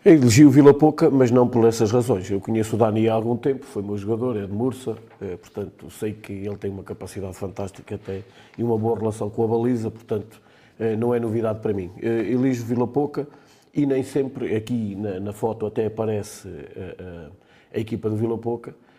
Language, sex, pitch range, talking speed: Portuguese, male, 100-120 Hz, 195 wpm